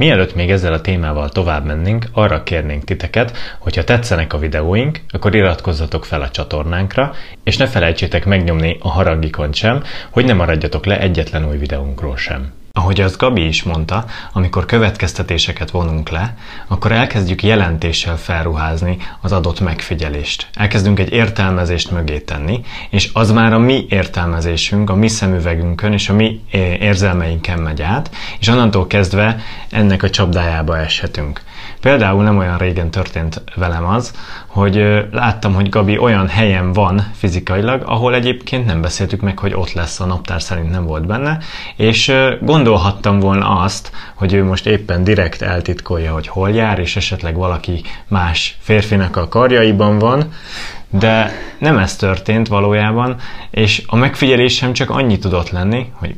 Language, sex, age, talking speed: Hungarian, male, 30-49, 150 wpm